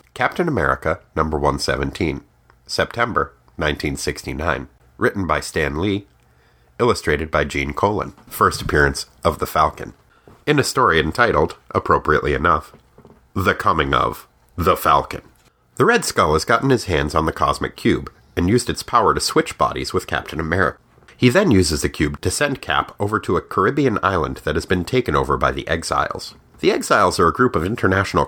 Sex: male